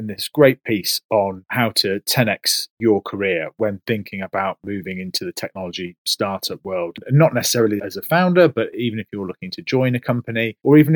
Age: 30-49